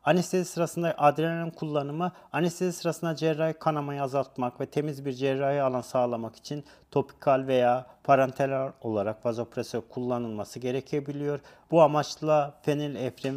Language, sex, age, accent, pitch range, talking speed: Turkish, male, 40-59, native, 135-165 Hz, 115 wpm